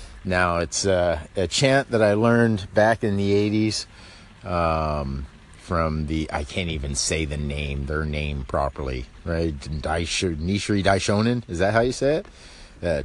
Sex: male